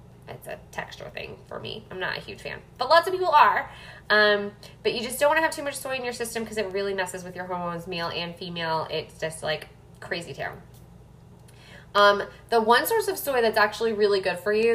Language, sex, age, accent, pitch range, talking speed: English, female, 20-39, American, 190-245 Hz, 230 wpm